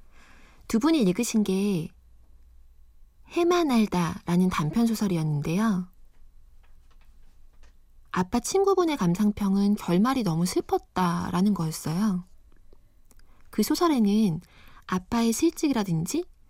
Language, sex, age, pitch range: Korean, female, 20-39, 155-220 Hz